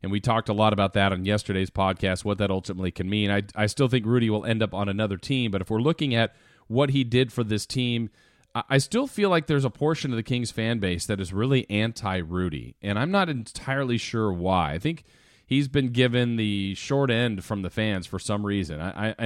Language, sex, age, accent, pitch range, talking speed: English, male, 40-59, American, 105-135 Hz, 235 wpm